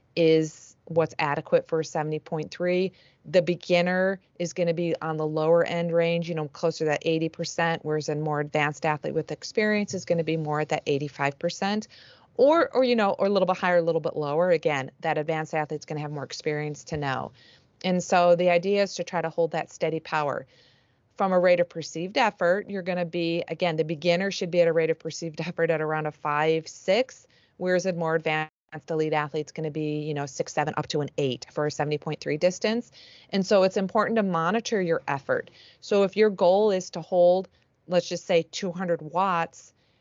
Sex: female